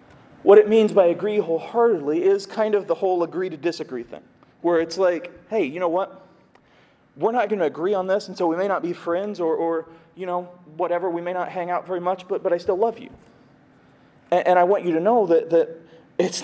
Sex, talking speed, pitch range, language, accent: male, 235 wpm, 170-215 Hz, English, American